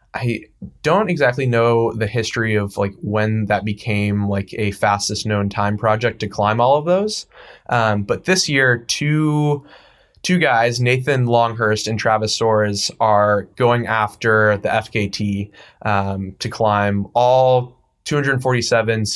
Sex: male